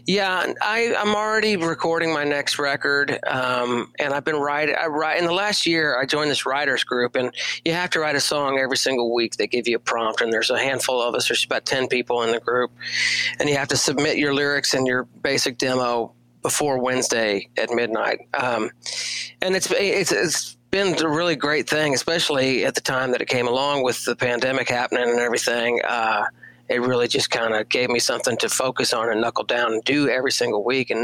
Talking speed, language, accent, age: 215 wpm, English, American, 40-59